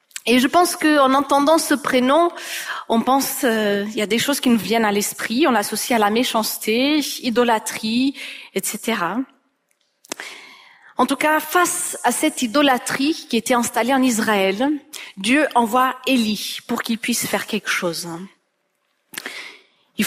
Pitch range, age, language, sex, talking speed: 225-290 Hz, 40-59, French, female, 145 wpm